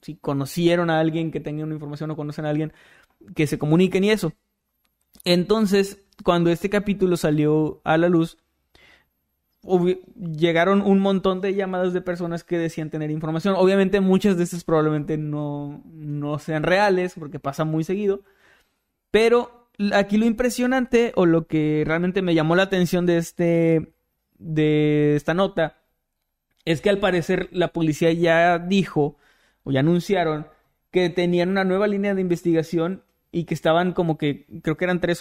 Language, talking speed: Spanish, 160 wpm